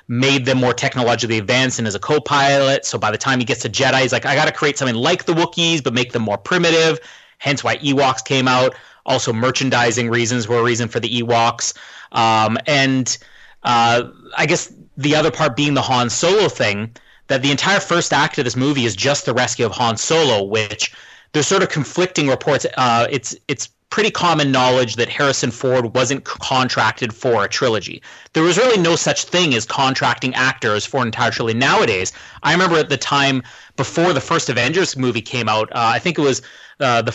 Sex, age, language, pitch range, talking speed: male, 30-49, English, 120-150 Hz, 205 wpm